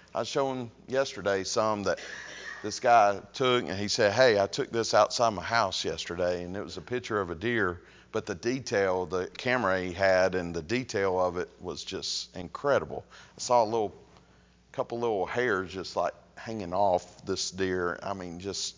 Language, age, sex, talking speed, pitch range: English, 40-59, male, 190 wpm, 90-115 Hz